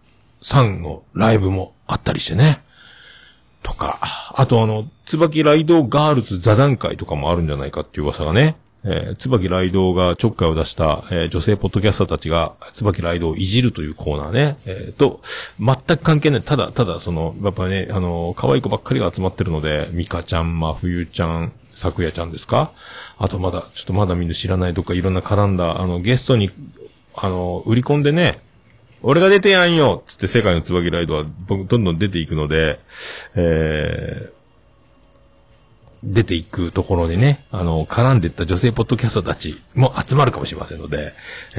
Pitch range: 85-120 Hz